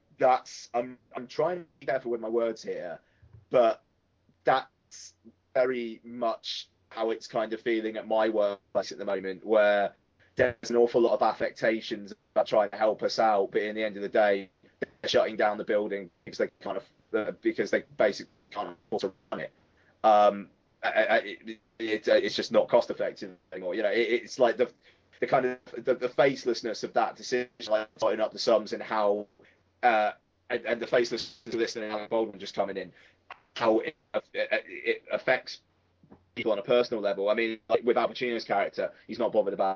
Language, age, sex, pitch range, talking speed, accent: English, 20-39, male, 100-120 Hz, 185 wpm, British